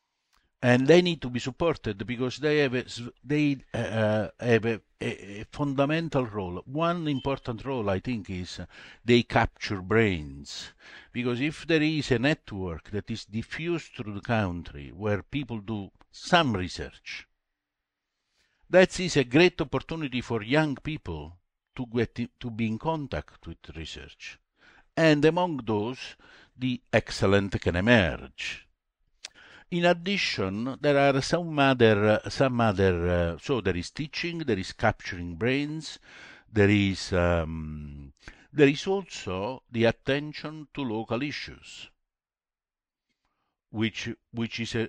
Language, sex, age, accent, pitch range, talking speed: English, male, 60-79, Italian, 95-140 Hz, 130 wpm